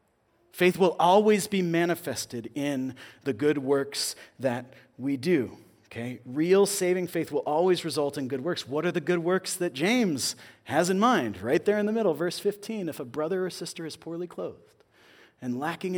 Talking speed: 185 wpm